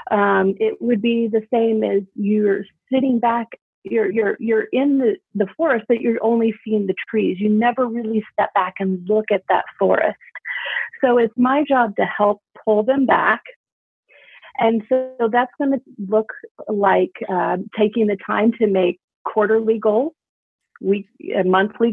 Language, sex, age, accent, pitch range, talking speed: English, female, 40-59, American, 205-245 Hz, 165 wpm